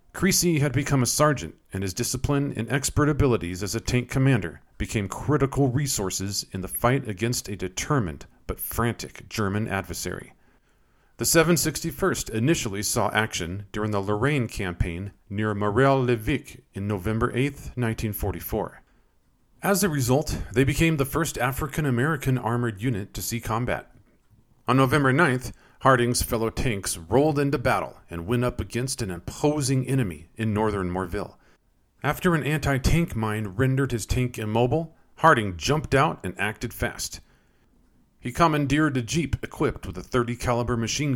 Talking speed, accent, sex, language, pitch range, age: 145 wpm, American, male, English, 100-135 Hz, 40-59